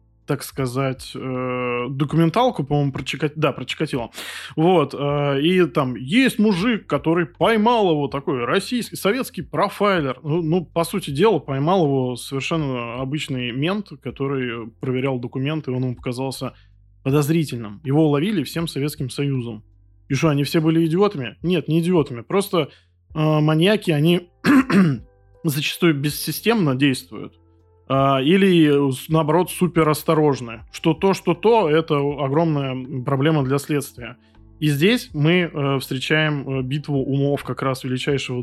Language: Russian